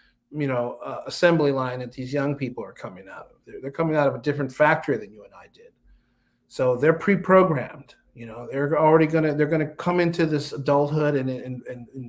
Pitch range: 135-170 Hz